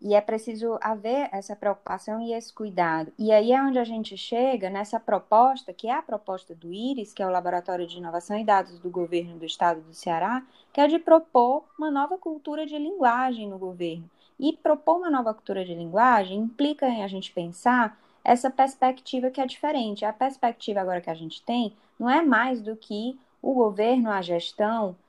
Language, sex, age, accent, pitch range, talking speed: Portuguese, female, 20-39, Brazilian, 195-265 Hz, 195 wpm